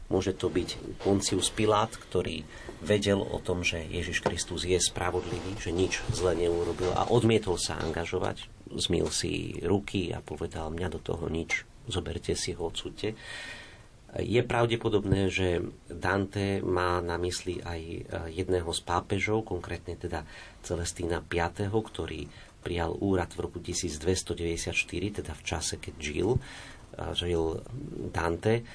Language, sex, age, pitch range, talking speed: Slovak, male, 50-69, 85-100 Hz, 130 wpm